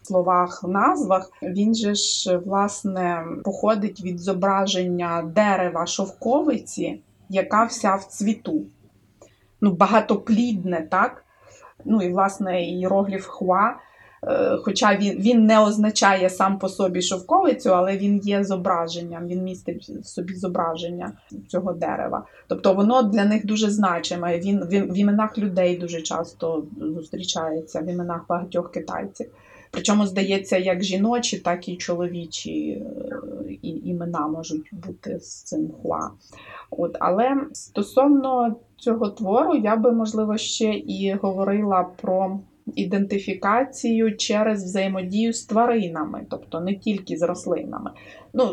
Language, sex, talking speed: Ukrainian, female, 120 wpm